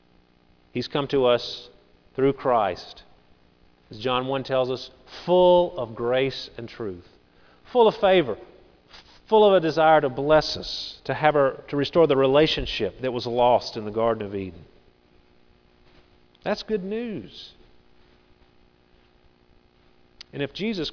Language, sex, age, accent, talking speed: English, male, 40-59, American, 135 wpm